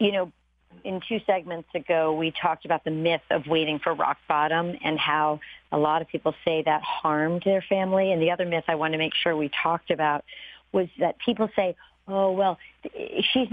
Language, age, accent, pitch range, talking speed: English, 50-69, American, 165-200 Hz, 205 wpm